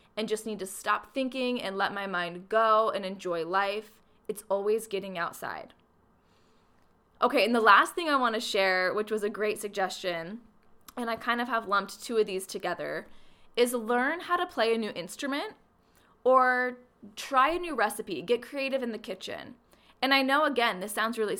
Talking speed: 190 wpm